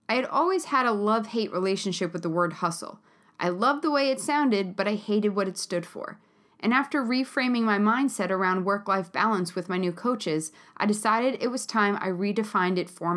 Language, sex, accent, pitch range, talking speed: English, female, American, 185-245 Hz, 205 wpm